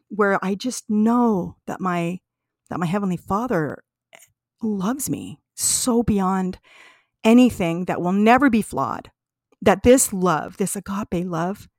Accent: American